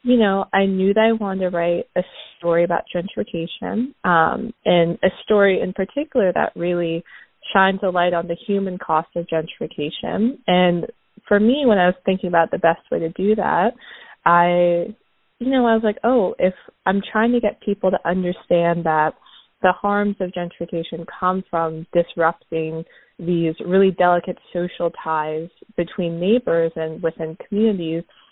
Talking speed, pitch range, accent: 165 wpm, 170-205 Hz, American